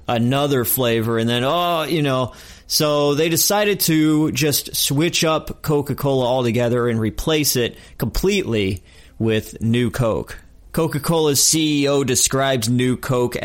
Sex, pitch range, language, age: male, 115-160 Hz, English, 30-49